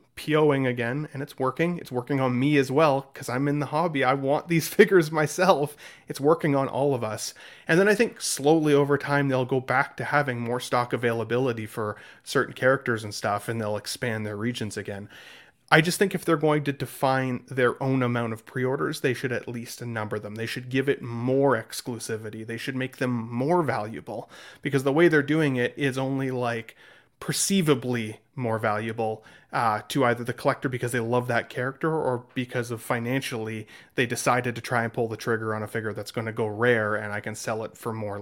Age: 30-49